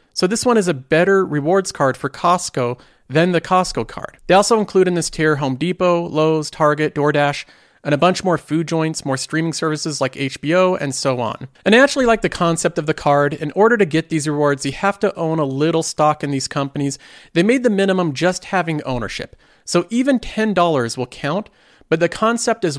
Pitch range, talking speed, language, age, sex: 140-185 Hz, 215 wpm, English, 40-59, male